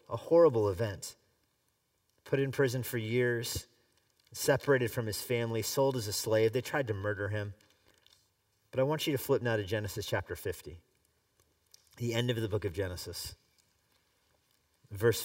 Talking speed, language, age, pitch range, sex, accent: 155 wpm, English, 40-59, 100-130 Hz, male, American